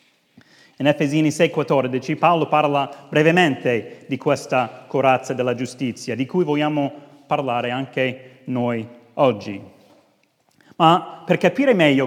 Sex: male